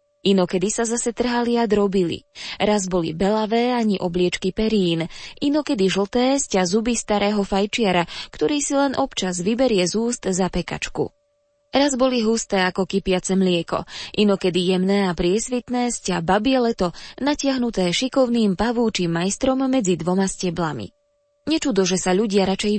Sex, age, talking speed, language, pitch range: female, 20-39, 135 wpm, Slovak, 185-240 Hz